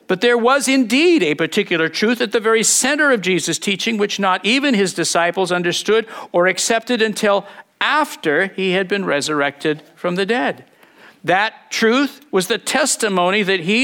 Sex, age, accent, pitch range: male, 50-69, American, 165-225 Hz